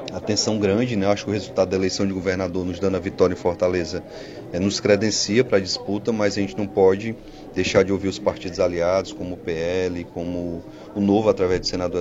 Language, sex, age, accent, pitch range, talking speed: Portuguese, male, 30-49, Brazilian, 95-105 Hz, 215 wpm